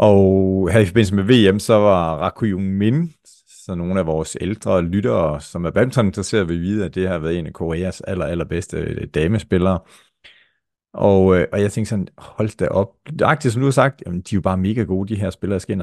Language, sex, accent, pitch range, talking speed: Danish, male, native, 90-115 Hz, 225 wpm